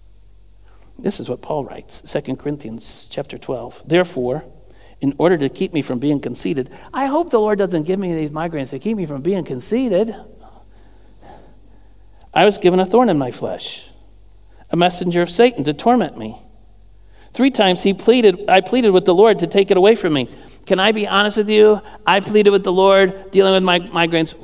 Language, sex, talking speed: English, male, 190 wpm